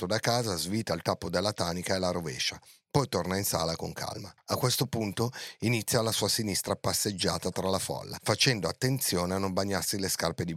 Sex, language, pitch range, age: male, Italian, 90-110 Hz, 40-59